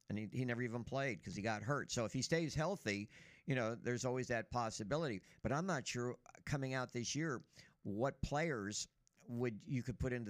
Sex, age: male, 50-69